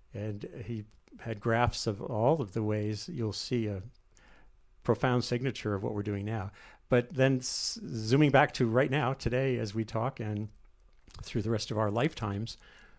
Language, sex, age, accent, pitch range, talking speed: English, male, 50-69, American, 105-130 Hz, 170 wpm